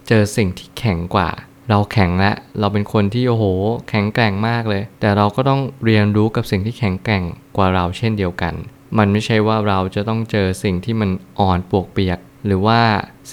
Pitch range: 95-115 Hz